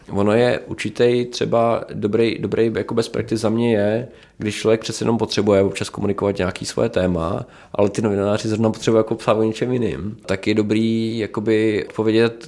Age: 20-39